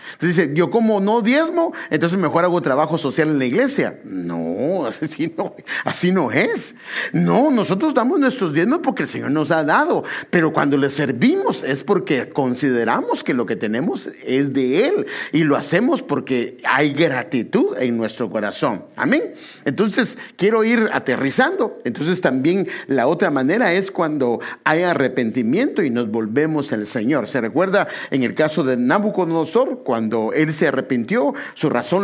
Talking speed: 165 wpm